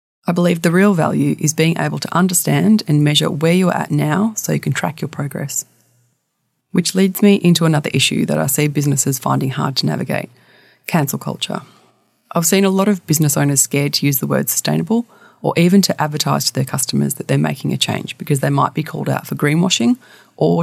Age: 30-49